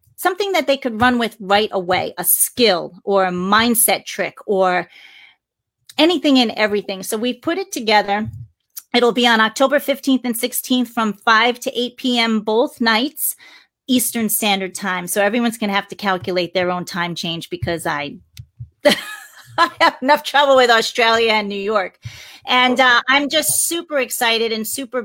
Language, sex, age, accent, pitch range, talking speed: English, female, 30-49, American, 210-250 Hz, 170 wpm